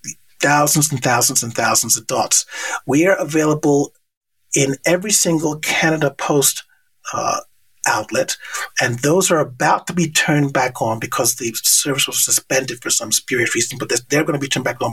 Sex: male